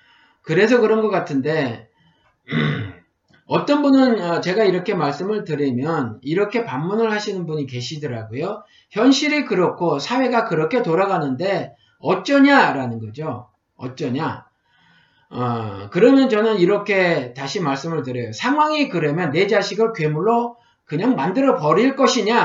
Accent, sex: native, male